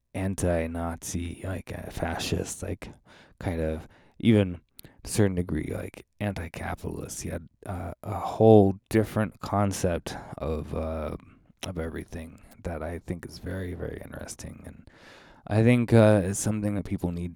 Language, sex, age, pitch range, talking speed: English, male, 20-39, 85-95 Hz, 140 wpm